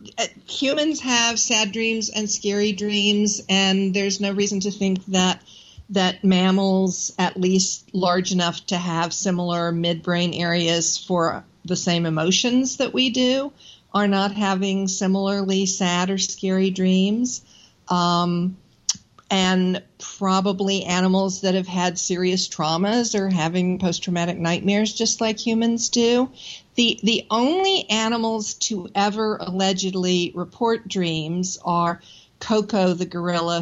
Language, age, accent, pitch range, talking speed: English, 50-69, American, 180-215 Hz, 125 wpm